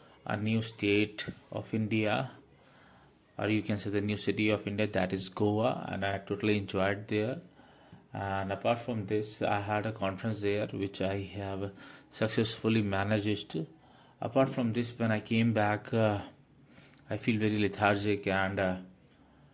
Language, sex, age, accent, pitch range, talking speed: Hindi, male, 30-49, native, 100-115 Hz, 155 wpm